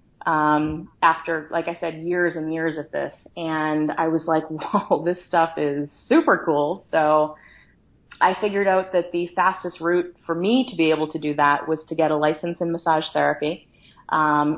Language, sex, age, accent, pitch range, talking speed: English, female, 20-39, American, 150-165 Hz, 185 wpm